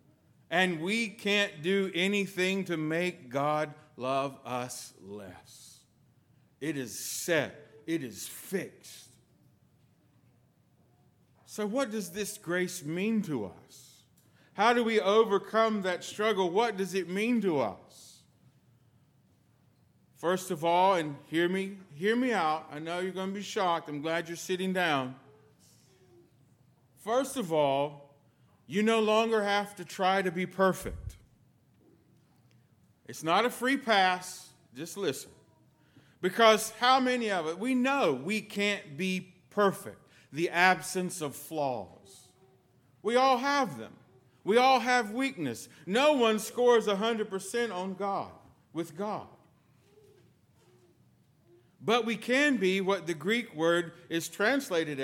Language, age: English, 50-69